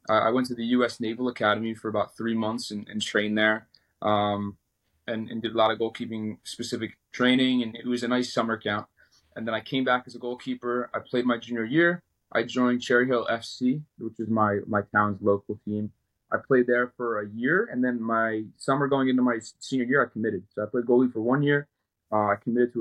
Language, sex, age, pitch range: English, male, 20-39, 105-125 Hz